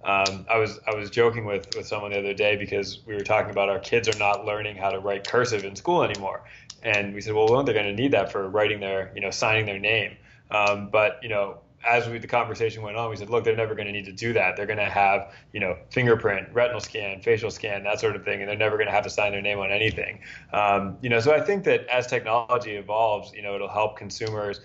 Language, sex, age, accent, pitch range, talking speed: English, male, 20-39, American, 100-115 Hz, 270 wpm